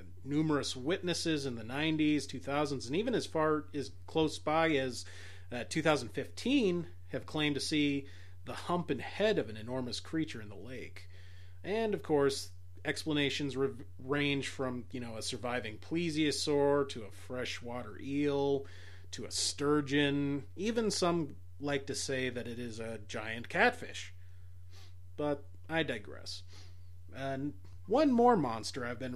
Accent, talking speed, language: American, 145 wpm, English